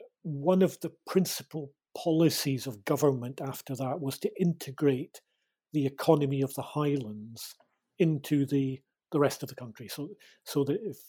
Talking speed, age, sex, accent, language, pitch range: 150 wpm, 40-59, male, British, English, 130-155 Hz